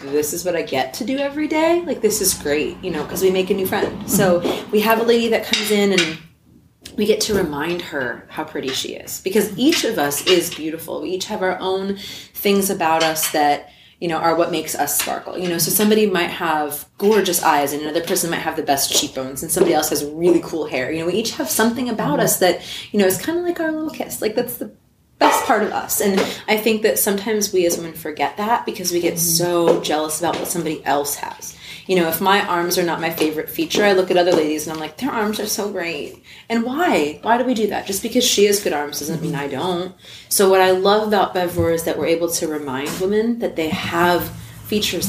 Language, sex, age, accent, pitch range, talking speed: English, female, 30-49, American, 160-210 Hz, 250 wpm